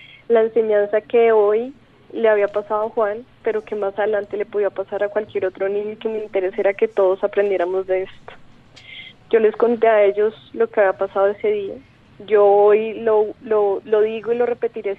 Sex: female